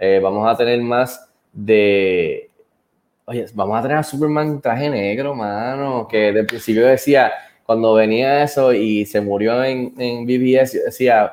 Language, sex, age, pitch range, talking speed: Spanish, male, 10-29, 105-135 Hz, 160 wpm